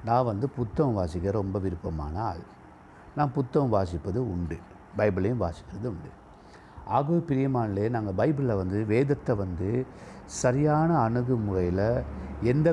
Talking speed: 115 wpm